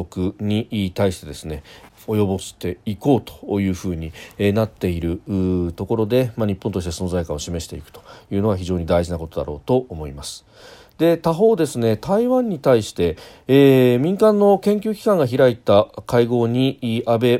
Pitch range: 95-130 Hz